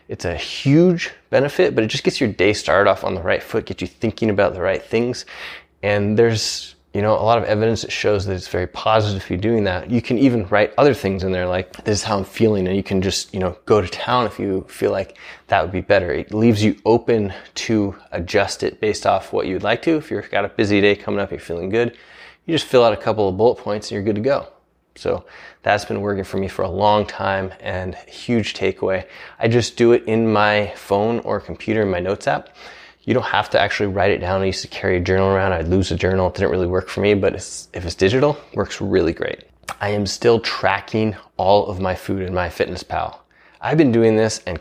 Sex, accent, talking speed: male, American, 250 wpm